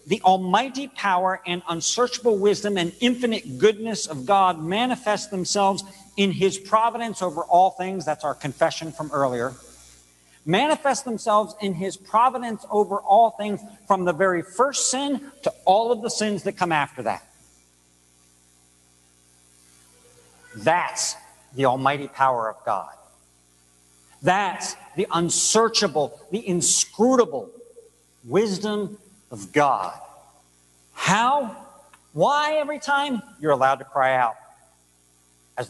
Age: 50-69